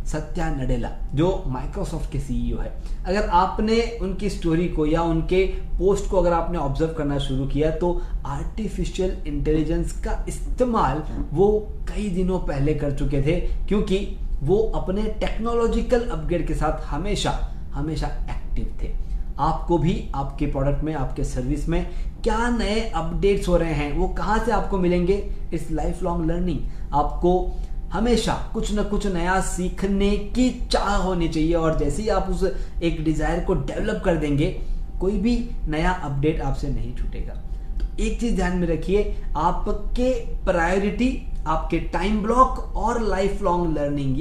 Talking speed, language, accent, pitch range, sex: 155 wpm, Hindi, native, 150-200 Hz, male